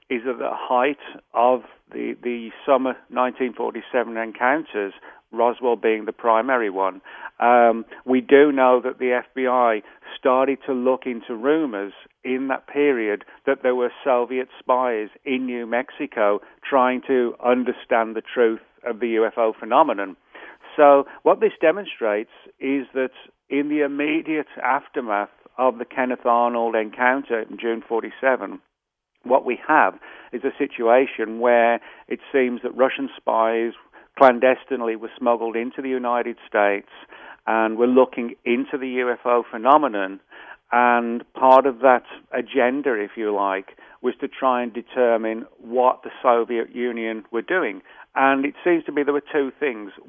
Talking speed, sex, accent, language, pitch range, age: 145 wpm, male, British, English, 115-130 Hz, 50-69